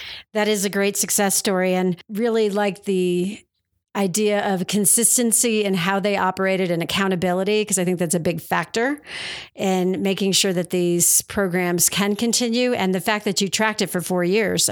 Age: 50-69